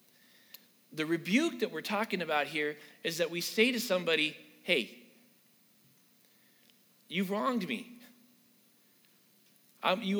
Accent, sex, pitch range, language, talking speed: American, male, 170-230 Hz, English, 110 wpm